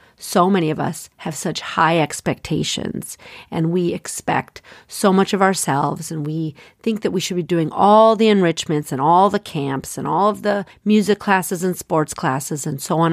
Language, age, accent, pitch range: English, 40-59, American, 155-200 Hz